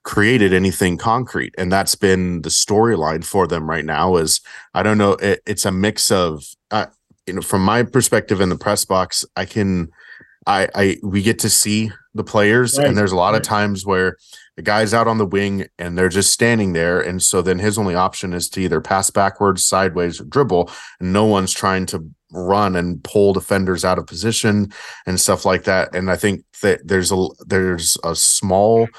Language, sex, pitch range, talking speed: English, male, 90-105 Hz, 200 wpm